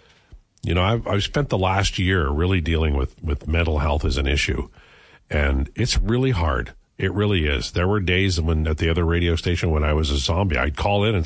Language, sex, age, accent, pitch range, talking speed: English, male, 50-69, American, 80-105 Hz, 225 wpm